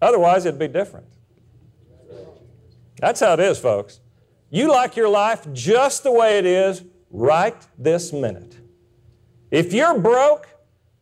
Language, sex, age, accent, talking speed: English, male, 50-69, American, 130 wpm